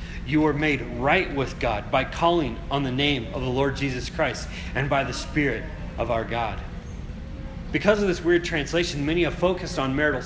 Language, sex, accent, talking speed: English, male, American, 195 wpm